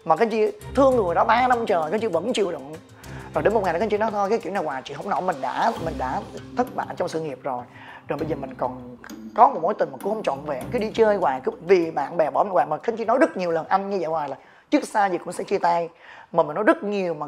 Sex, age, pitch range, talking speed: male, 20-39, 160-220 Hz, 315 wpm